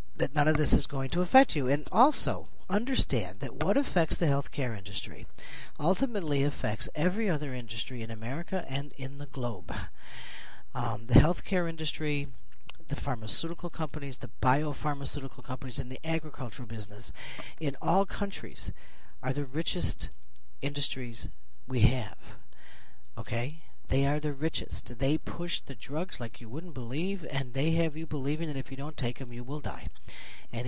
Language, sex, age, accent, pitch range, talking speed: English, male, 40-59, American, 120-150 Hz, 155 wpm